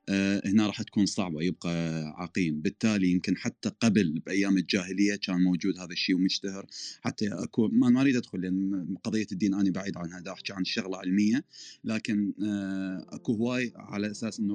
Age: 30-49